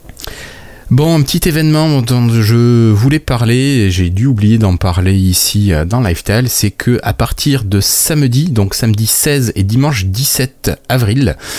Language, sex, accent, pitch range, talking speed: French, male, French, 95-125 Hz, 155 wpm